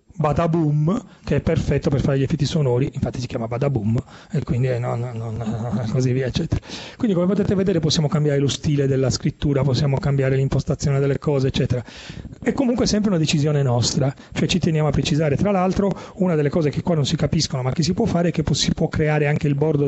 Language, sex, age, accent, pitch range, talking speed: Italian, male, 40-59, native, 130-170 Hz, 225 wpm